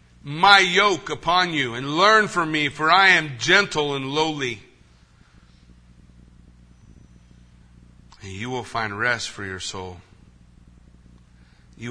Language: English